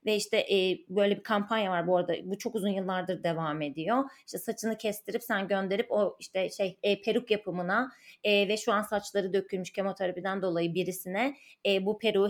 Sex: female